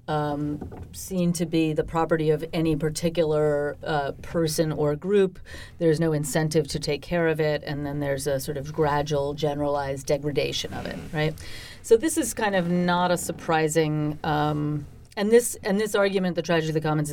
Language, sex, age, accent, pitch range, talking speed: English, female, 40-59, American, 140-165 Hz, 175 wpm